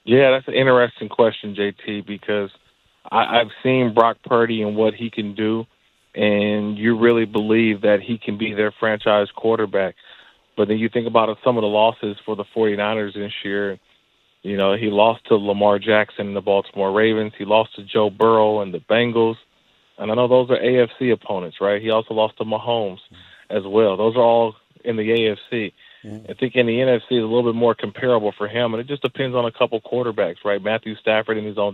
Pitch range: 105-115 Hz